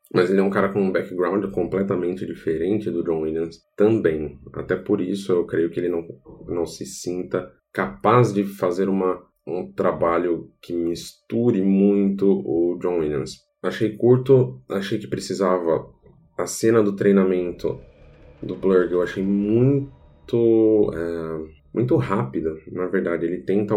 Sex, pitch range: male, 85-120 Hz